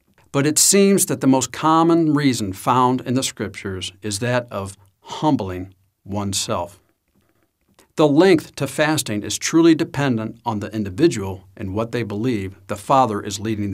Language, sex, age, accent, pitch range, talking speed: English, male, 60-79, American, 105-135 Hz, 155 wpm